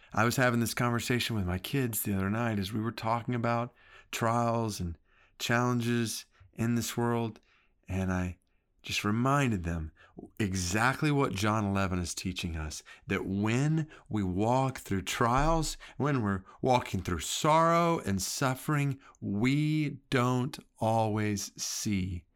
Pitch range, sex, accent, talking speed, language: 95-135 Hz, male, American, 135 wpm, English